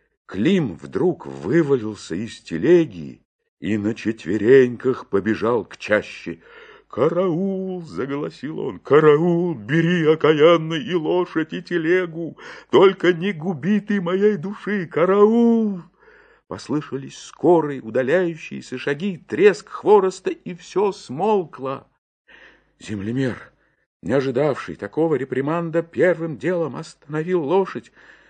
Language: Russian